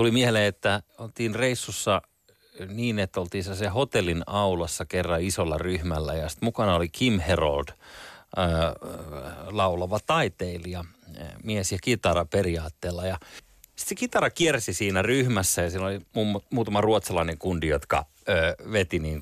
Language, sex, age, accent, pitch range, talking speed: Finnish, male, 30-49, native, 90-125 Hz, 135 wpm